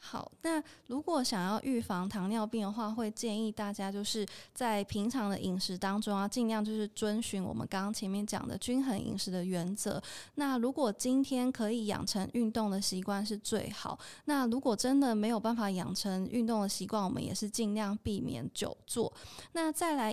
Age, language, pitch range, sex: 20-39, Chinese, 200-240 Hz, female